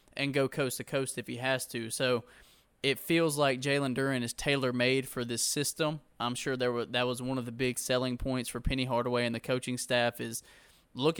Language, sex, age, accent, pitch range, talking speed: English, male, 20-39, American, 120-135 Hz, 225 wpm